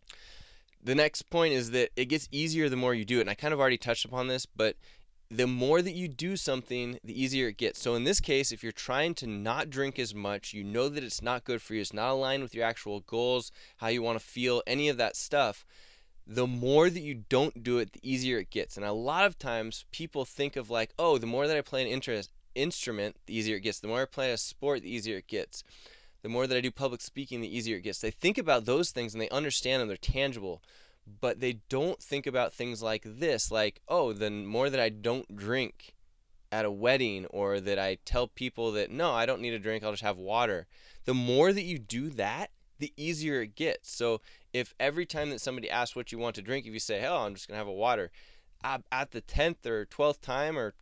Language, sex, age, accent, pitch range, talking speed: English, male, 20-39, American, 110-135 Hz, 245 wpm